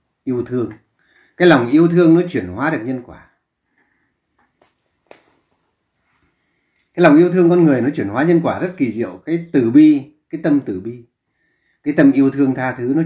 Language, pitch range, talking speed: Vietnamese, 115-160 Hz, 185 wpm